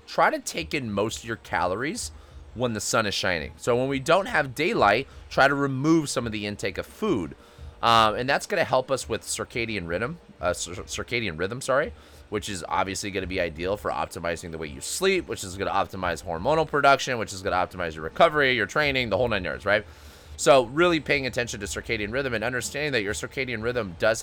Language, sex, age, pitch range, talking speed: English, male, 30-49, 90-115 Hz, 225 wpm